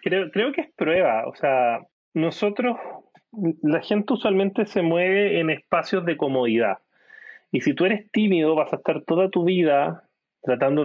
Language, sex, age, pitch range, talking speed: Spanish, male, 30-49, 145-195 Hz, 160 wpm